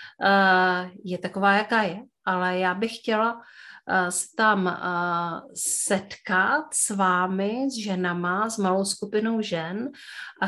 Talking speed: 130 wpm